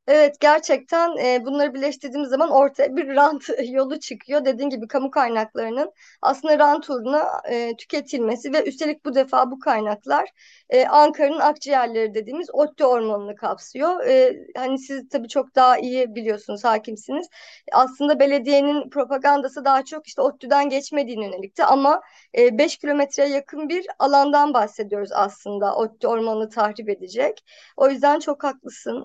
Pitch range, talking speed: 250-295 Hz, 140 wpm